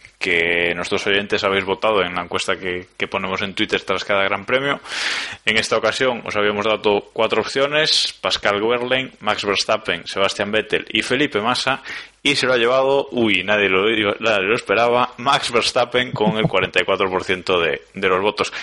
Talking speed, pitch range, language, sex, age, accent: 175 wpm, 95-125 Hz, Spanish, male, 20-39, Spanish